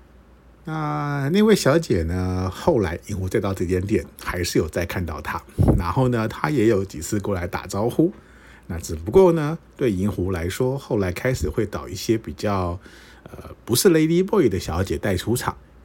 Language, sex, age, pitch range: Chinese, male, 50-69, 90-120 Hz